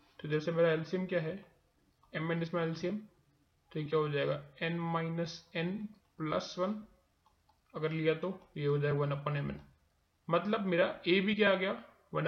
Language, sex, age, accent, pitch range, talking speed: Hindi, male, 30-49, native, 150-185 Hz, 170 wpm